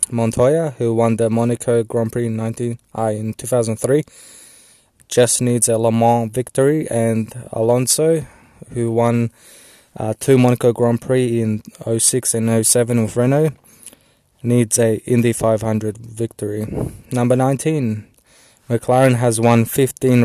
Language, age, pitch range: English, 20-39, 115-125 Hz